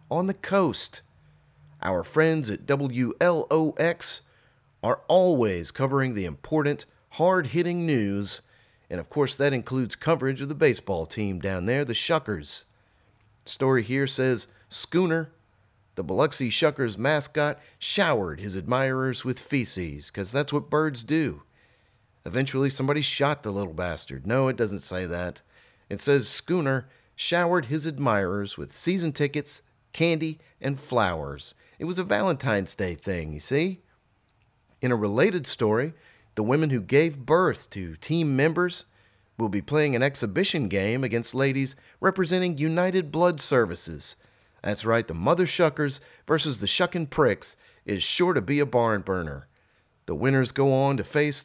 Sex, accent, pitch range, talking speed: male, American, 105-155 Hz, 145 wpm